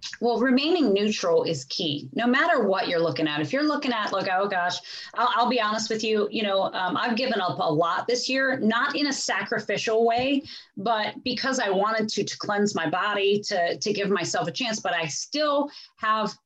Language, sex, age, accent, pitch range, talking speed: English, female, 30-49, American, 180-265 Hz, 210 wpm